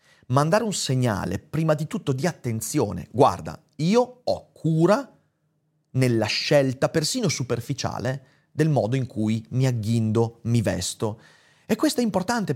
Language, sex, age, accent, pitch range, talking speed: Italian, male, 30-49, native, 115-155 Hz, 135 wpm